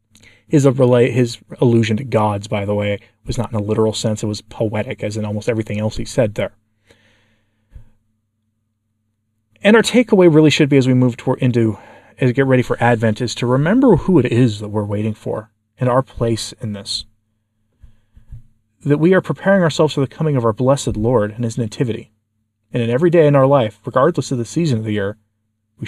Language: English